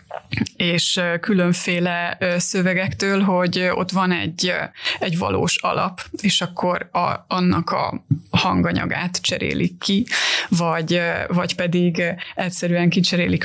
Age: 20-39